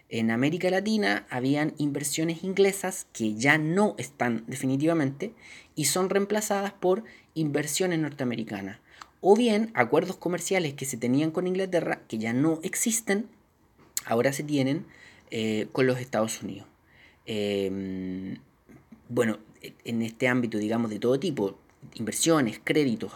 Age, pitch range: 20-39, 120-170 Hz